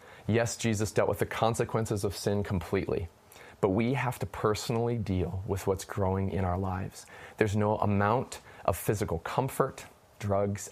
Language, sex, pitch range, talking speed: English, male, 95-110 Hz, 155 wpm